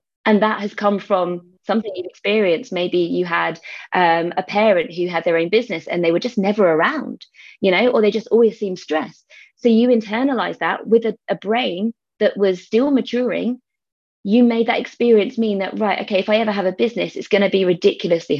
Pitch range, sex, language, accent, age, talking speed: 185-235 Hz, female, English, British, 20-39, 210 wpm